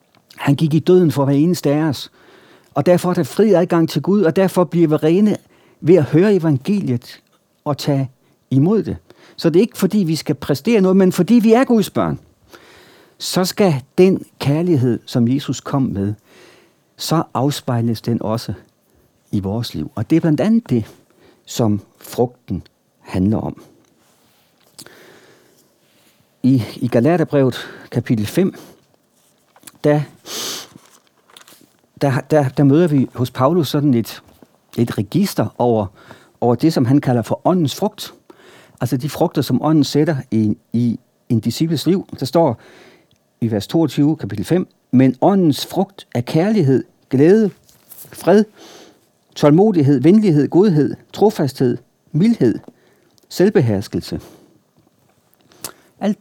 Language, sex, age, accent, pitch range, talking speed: Danish, male, 60-79, native, 125-175 Hz, 130 wpm